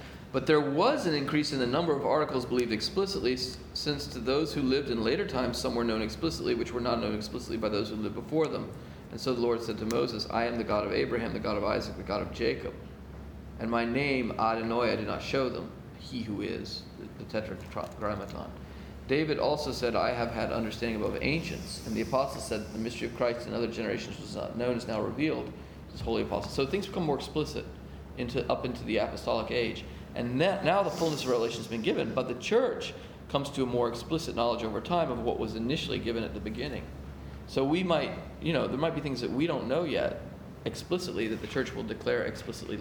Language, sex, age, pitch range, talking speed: English, male, 40-59, 105-140 Hz, 225 wpm